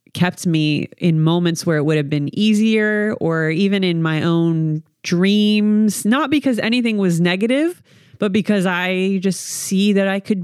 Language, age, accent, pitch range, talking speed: English, 30-49, American, 160-205 Hz, 165 wpm